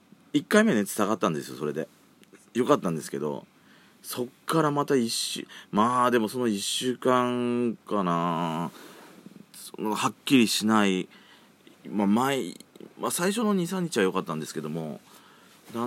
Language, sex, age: Japanese, male, 40-59